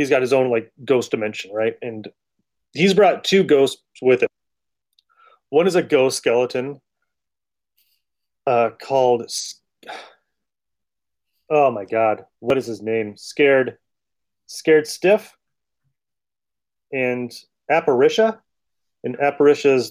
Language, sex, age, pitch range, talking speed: English, male, 30-49, 115-145 Hz, 110 wpm